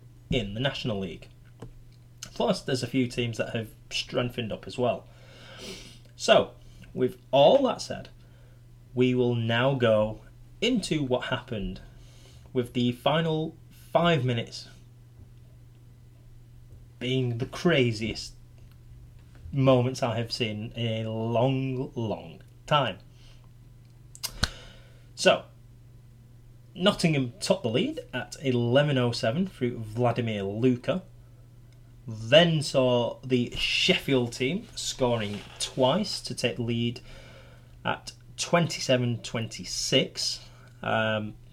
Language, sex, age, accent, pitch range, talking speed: English, male, 20-39, British, 120-130 Hz, 100 wpm